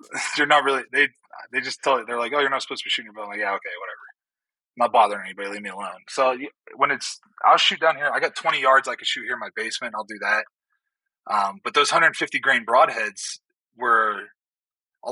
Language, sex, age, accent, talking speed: English, male, 20-39, American, 235 wpm